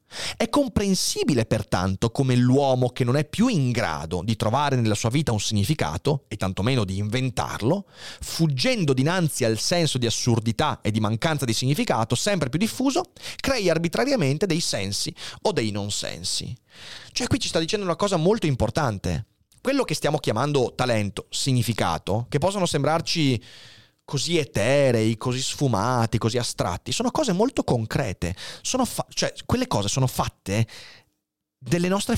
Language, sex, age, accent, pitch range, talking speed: Italian, male, 30-49, native, 110-170 Hz, 150 wpm